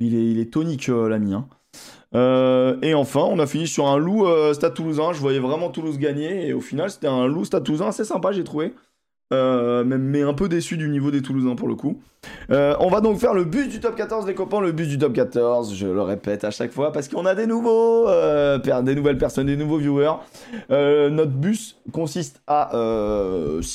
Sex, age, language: male, 20-39, French